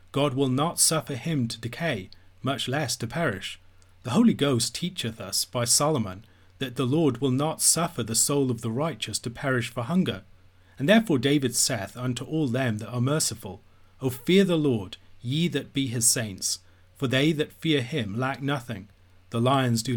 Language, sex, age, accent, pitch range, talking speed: English, male, 40-59, British, 110-140 Hz, 185 wpm